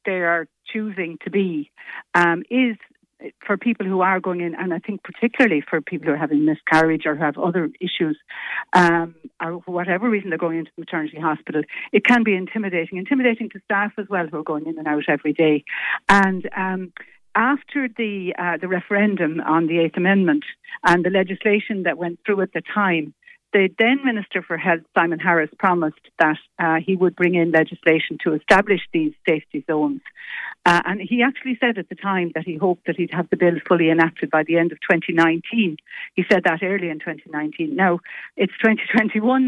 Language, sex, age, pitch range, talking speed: English, female, 60-79, 165-205 Hz, 195 wpm